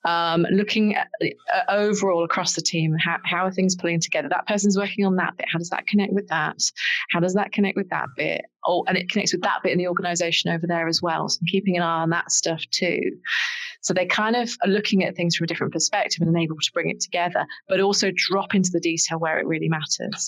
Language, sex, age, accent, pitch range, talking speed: English, female, 30-49, British, 165-195 Hz, 250 wpm